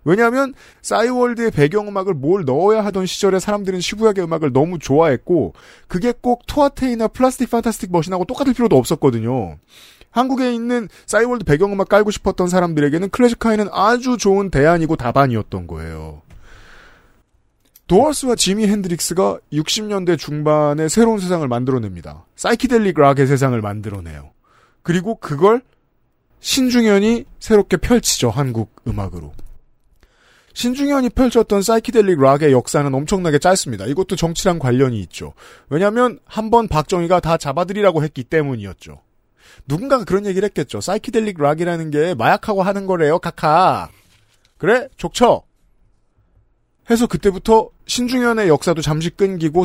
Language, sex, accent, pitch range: Korean, male, native, 135-220 Hz